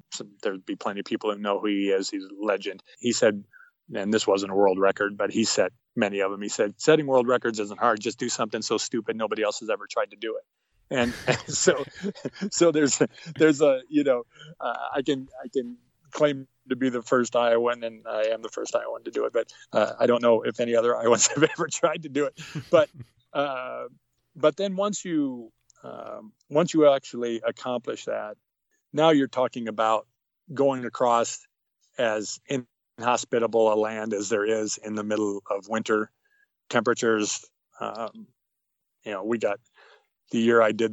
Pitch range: 105-145 Hz